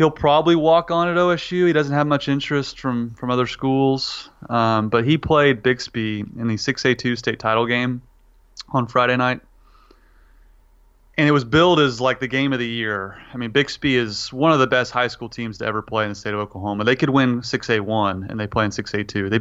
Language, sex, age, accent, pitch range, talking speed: English, male, 30-49, American, 110-135 Hz, 215 wpm